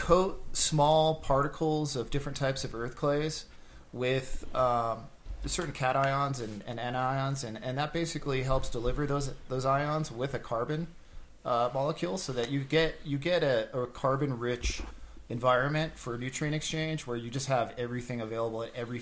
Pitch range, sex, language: 115-135 Hz, male, English